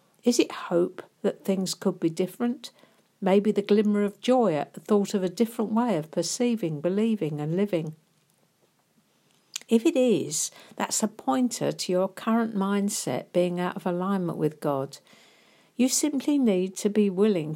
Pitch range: 175-225 Hz